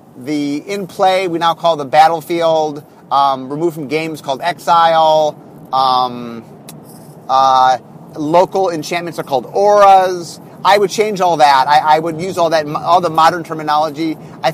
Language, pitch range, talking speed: English, 150-185 Hz, 155 wpm